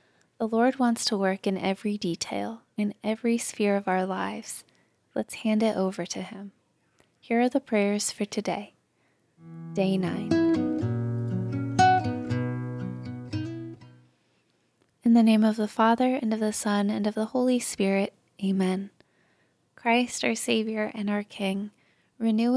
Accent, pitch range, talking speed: American, 195-225 Hz, 135 wpm